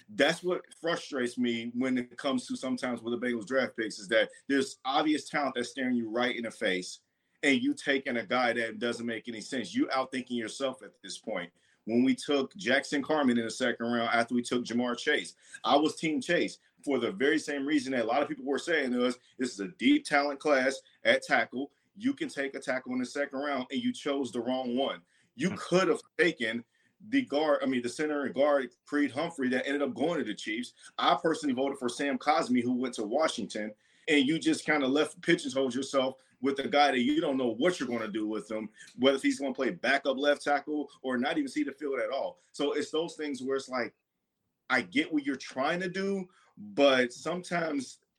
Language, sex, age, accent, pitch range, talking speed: English, male, 40-59, American, 125-150 Hz, 230 wpm